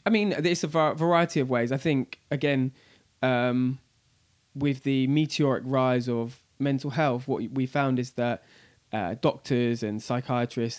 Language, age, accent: English, 20-39, British